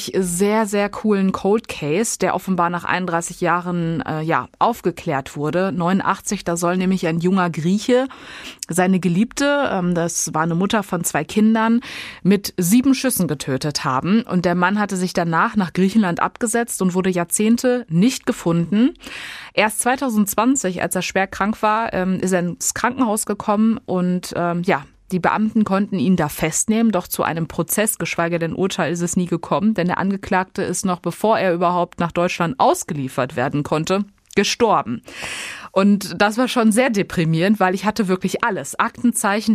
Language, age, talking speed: German, 20-39, 165 wpm